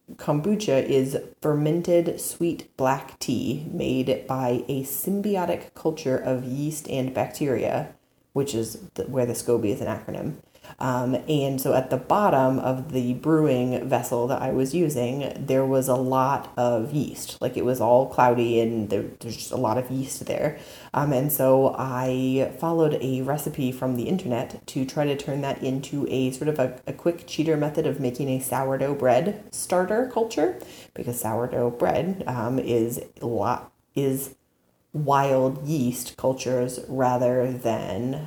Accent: American